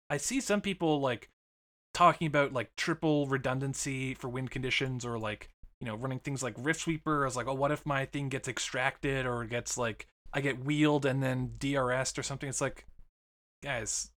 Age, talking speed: 20-39, 195 wpm